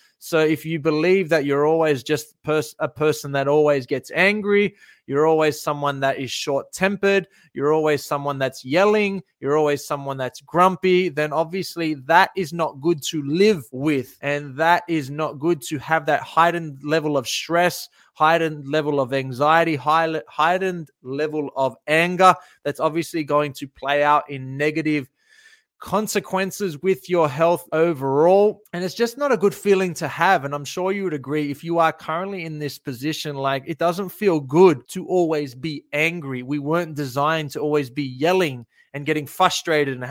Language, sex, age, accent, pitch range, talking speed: English, male, 20-39, Australian, 145-175 Hz, 170 wpm